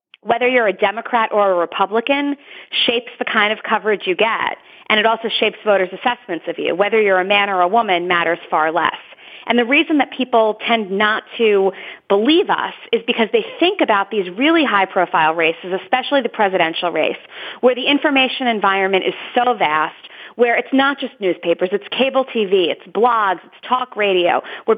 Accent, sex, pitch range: American, female, 185-245 Hz